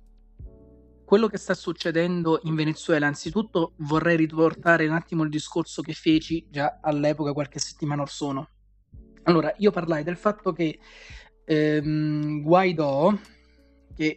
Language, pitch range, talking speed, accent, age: Italian, 150-175 Hz, 125 wpm, native, 30-49